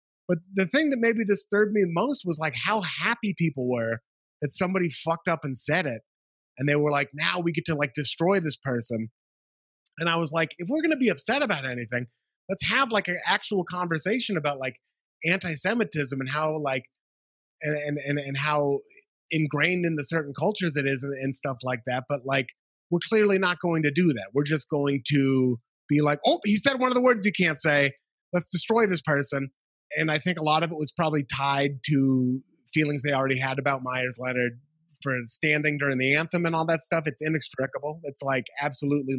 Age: 30-49